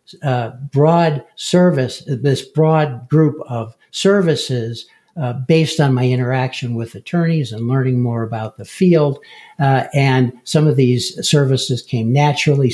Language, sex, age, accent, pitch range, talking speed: English, male, 60-79, American, 125-145 Hz, 135 wpm